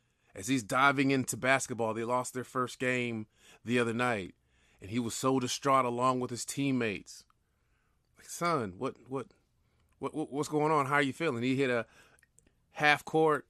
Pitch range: 125-170 Hz